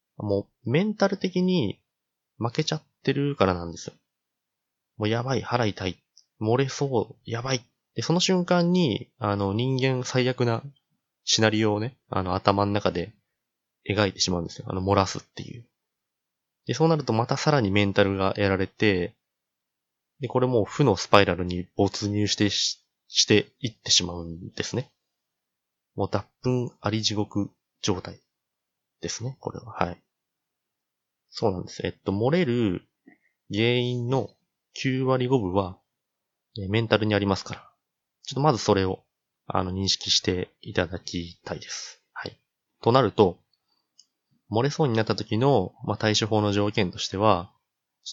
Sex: male